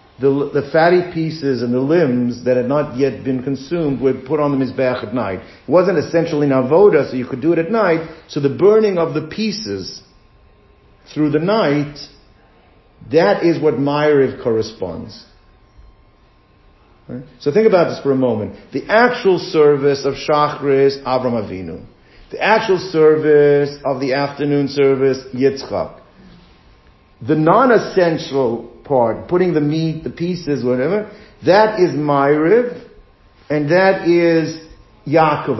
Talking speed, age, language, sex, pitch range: 140 wpm, 50-69, English, male, 130-160 Hz